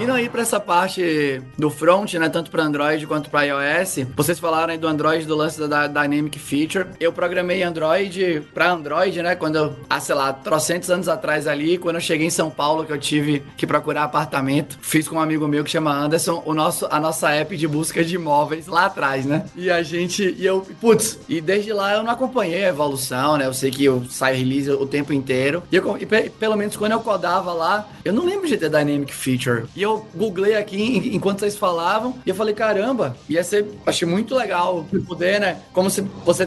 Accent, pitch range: Brazilian, 155-200 Hz